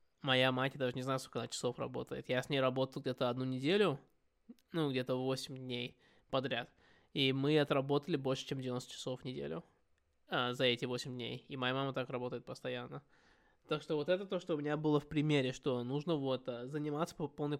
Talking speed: 205 wpm